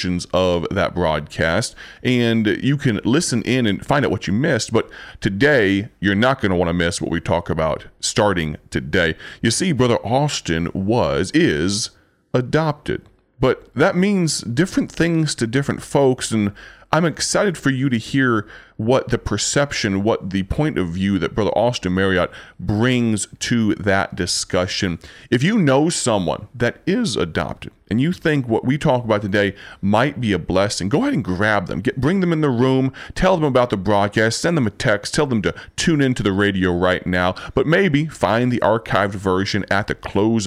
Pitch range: 90-120 Hz